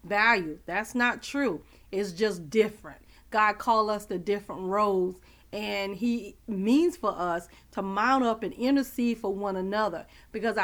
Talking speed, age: 150 wpm, 40-59